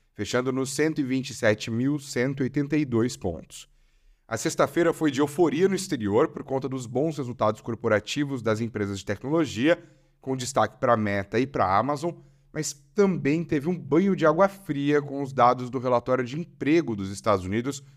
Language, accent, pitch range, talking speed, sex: Portuguese, Brazilian, 120-160 Hz, 160 wpm, male